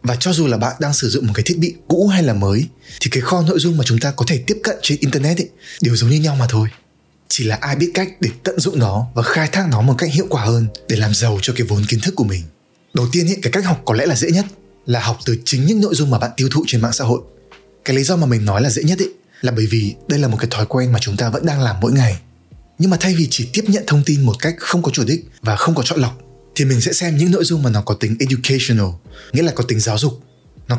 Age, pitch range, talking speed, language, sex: 20-39, 115-160 Hz, 300 wpm, Vietnamese, male